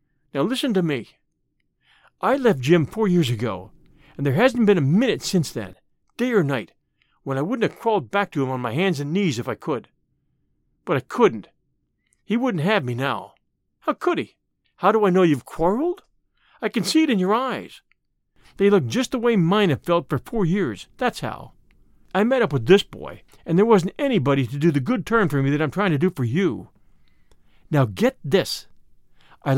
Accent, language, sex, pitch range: American, English, male, 145-225 Hz